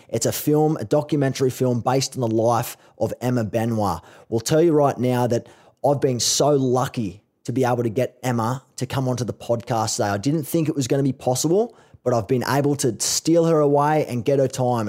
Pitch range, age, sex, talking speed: 120-145 Hz, 20-39, male, 225 wpm